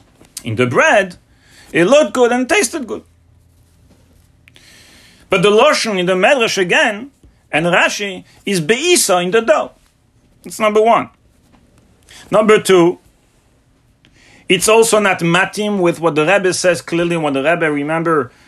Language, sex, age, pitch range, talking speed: English, male, 40-59, 130-205 Hz, 135 wpm